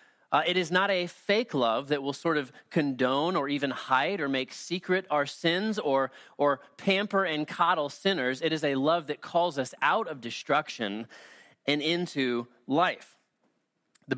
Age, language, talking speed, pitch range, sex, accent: 30-49, English, 170 wpm, 140-175 Hz, male, American